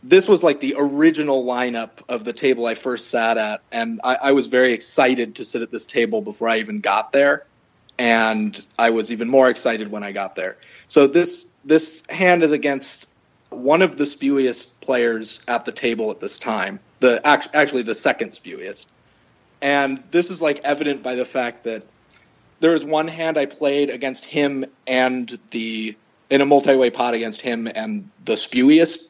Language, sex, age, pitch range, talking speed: English, male, 30-49, 120-145 Hz, 185 wpm